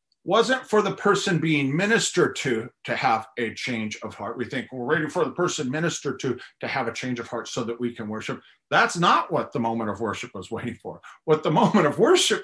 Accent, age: American, 40-59